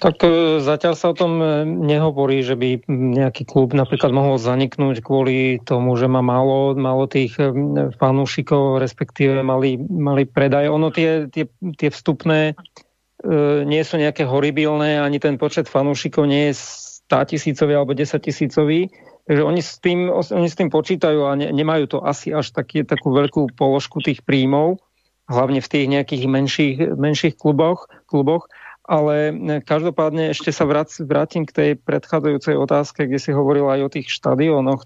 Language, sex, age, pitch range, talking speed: Slovak, male, 40-59, 135-155 Hz, 150 wpm